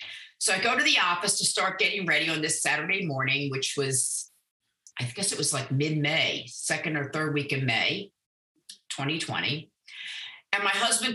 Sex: female